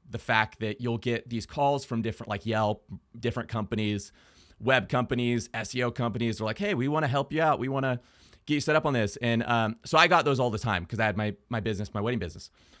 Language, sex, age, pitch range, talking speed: English, male, 30-49, 110-130 Hz, 250 wpm